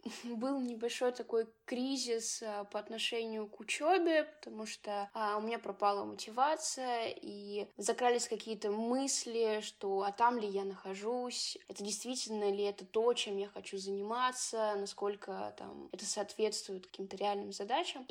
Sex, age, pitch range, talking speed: female, 10-29, 205-255 Hz, 135 wpm